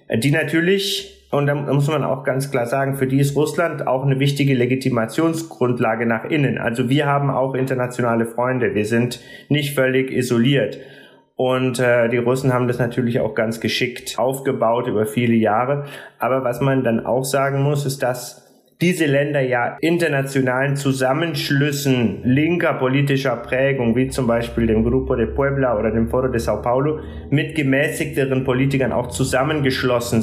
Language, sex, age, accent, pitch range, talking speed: German, male, 30-49, German, 125-140 Hz, 160 wpm